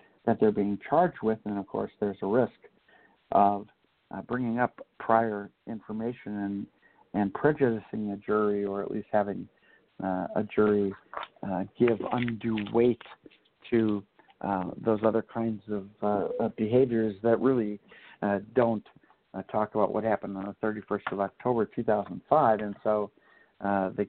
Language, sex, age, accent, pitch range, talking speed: English, male, 60-79, American, 100-115 Hz, 150 wpm